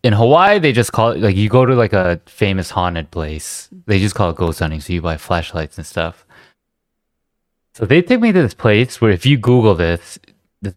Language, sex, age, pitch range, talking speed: English, male, 20-39, 85-110 Hz, 225 wpm